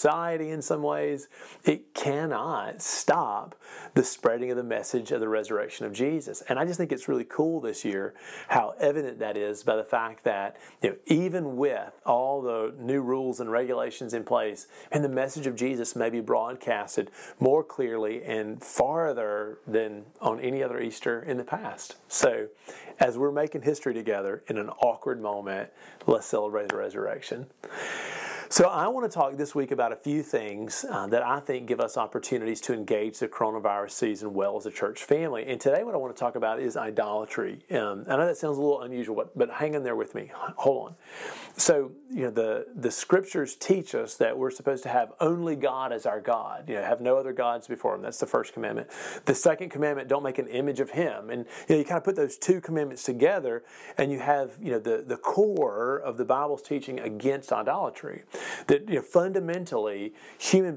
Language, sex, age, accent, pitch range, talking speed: English, male, 40-59, American, 120-185 Hz, 200 wpm